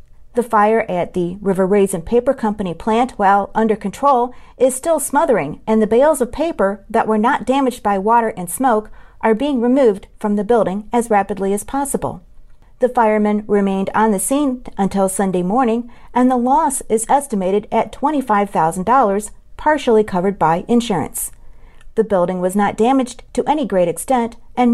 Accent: American